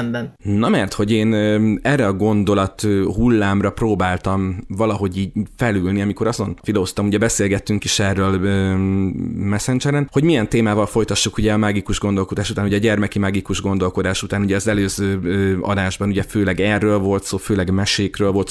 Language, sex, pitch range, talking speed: Hungarian, male, 95-110 Hz, 150 wpm